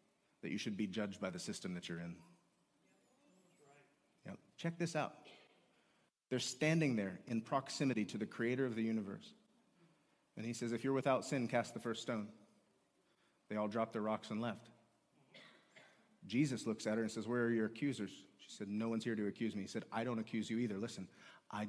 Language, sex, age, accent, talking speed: English, male, 30-49, American, 195 wpm